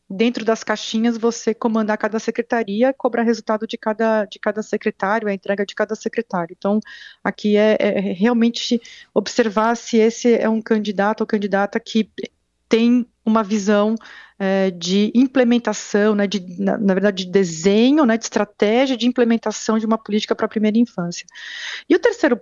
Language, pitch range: Portuguese, 205-235 Hz